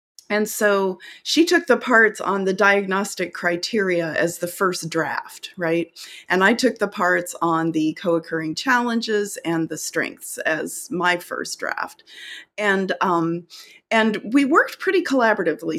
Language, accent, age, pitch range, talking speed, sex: English, American, 40-59, 165-205 Hz, 145 wpm, female